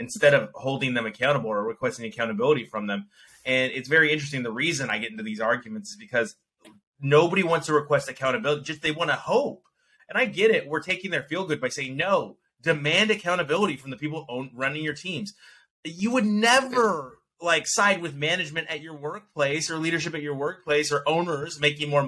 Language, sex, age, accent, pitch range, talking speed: English, male, 30-49, American, 135-195 Hz, 195 wpm